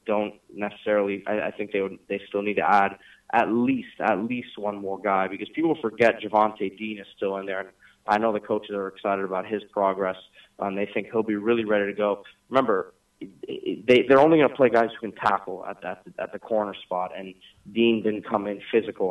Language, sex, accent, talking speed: English, male, American, 215 wpm